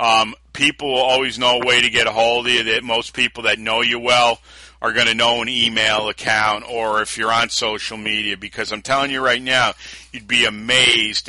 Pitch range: 110-135 Hz